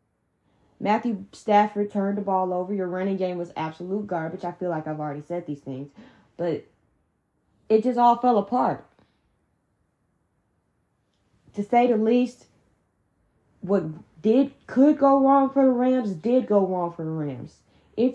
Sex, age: female, 10-29